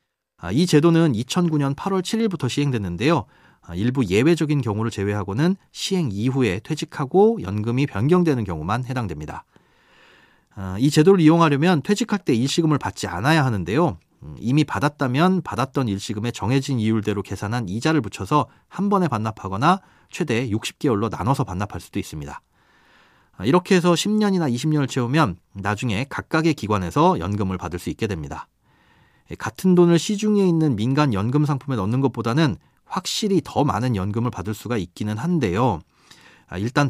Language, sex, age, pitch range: Korean, male, 40-59, 105-160 Hz